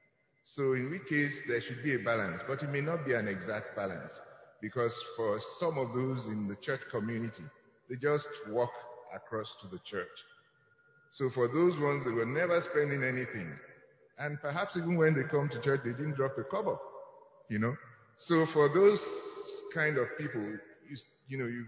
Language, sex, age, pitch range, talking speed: English, male, 50-69, 115-155 Hz, 185 wpm